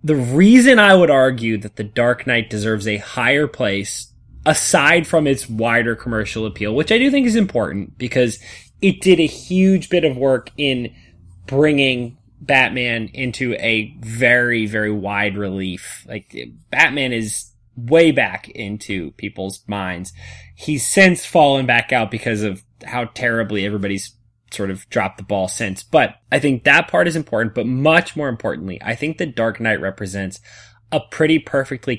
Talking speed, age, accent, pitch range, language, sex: 160 wpm, 20-39, American, 105-140 Hz, English, male